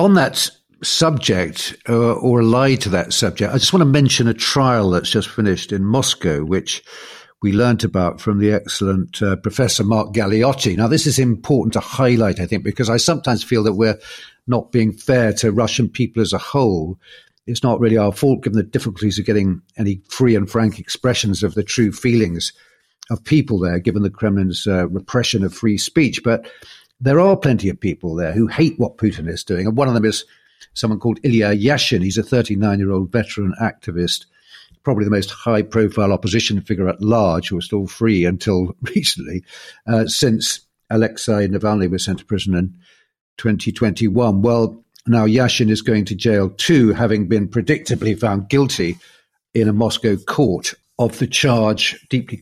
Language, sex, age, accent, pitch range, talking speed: English, male, 50-69, British, 100-120 Hz, 180 wpm